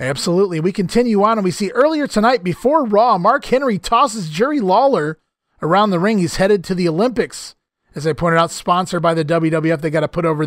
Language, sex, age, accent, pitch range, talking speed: English, male, 30-49, American, 155-215 Hz, 210 wpm